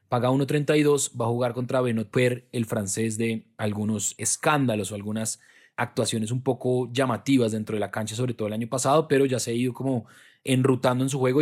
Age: 20-39